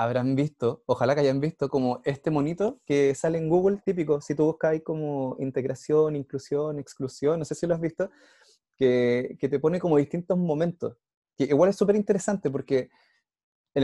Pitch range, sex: 125-160 Hz, male